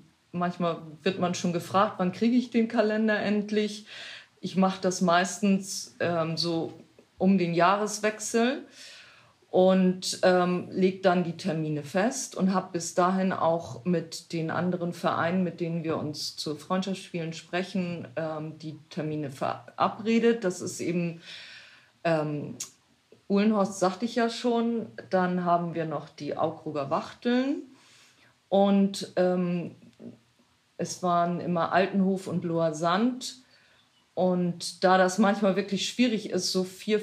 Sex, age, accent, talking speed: female, 40-59, German, 130 wpm